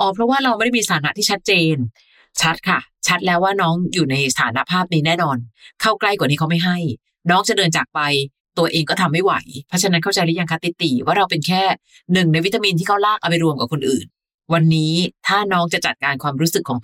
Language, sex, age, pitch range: Thai, female, 30-49, 155-185 Hz